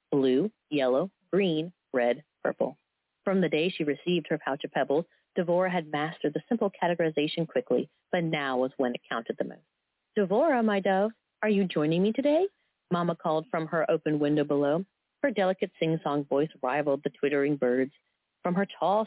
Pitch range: 145-195 Hz